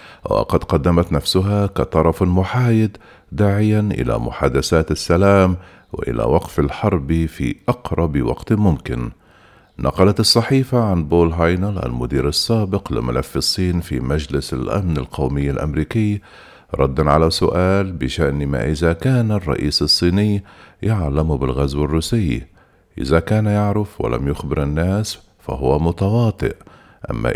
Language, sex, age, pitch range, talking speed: Arabic, male, 50-69, 70-95 Hz, 110 wpm